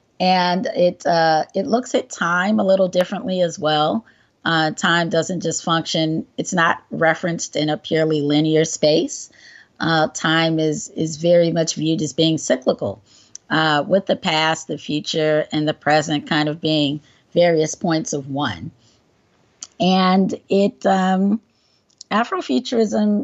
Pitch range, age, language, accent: 155-190 Hz, 30-49, English, American